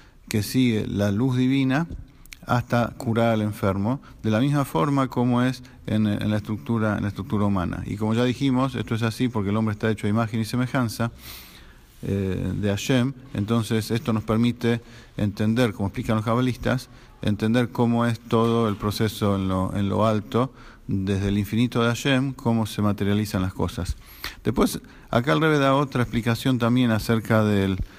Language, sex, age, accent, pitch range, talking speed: English, male, 50-69, Argentinian, 105-125 Hz, 175 wpm